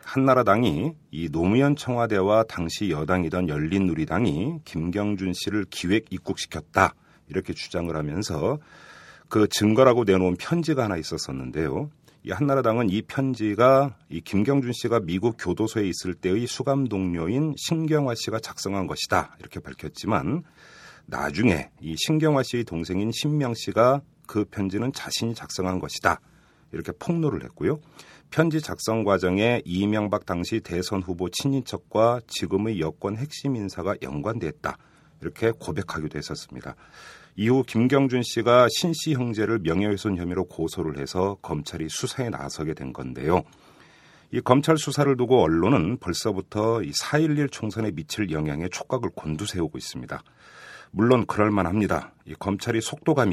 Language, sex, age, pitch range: Korean, male, 40-59, 90-130 Hz